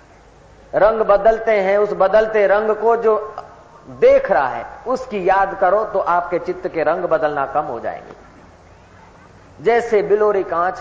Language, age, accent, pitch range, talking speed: Hindi, 40-59, native, 160-225 Hz, 145 wpm